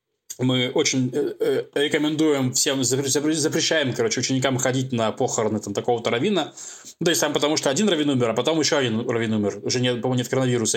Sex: male